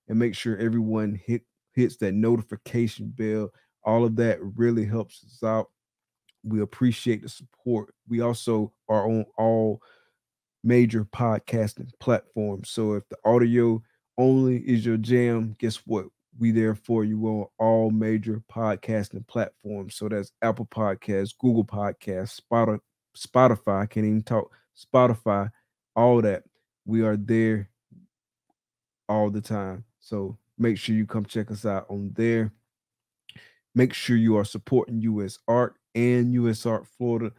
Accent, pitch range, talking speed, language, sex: American, 105-115 Hz, 140 wpm, English, male